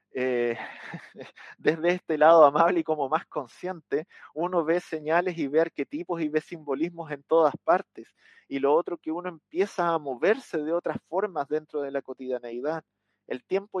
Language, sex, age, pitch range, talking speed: Spanish, male, 30-49, 130-160 Hz, 165 wpm